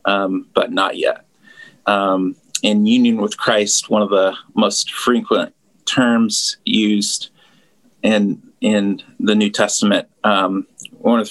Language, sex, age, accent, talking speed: English, male, 30-49, American, 135 wpm